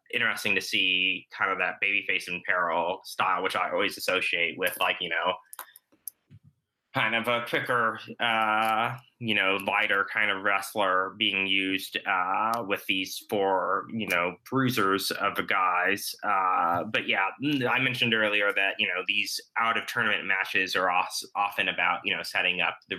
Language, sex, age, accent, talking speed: English, male, 20-39, American, 165 wpm